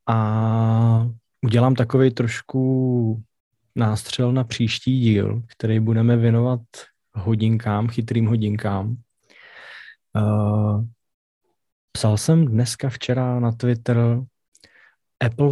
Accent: native